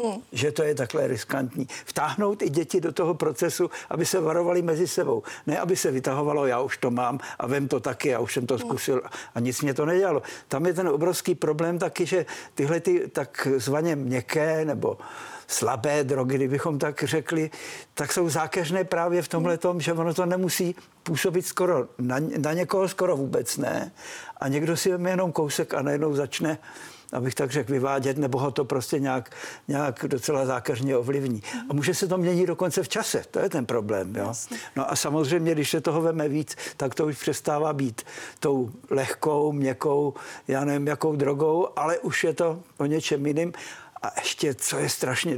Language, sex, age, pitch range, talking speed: Czech, male, 50-69, 140-175 Hz, 185 wpm